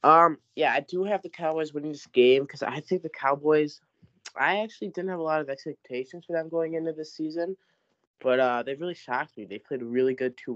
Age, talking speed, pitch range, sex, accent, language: 20-39, 235 wpm, 120-165 Hz, male, American, English